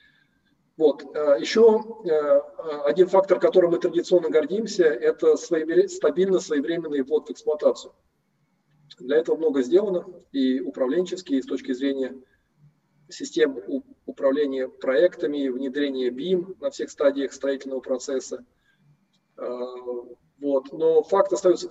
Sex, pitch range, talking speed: male, 135-195 Hz, 105 wpm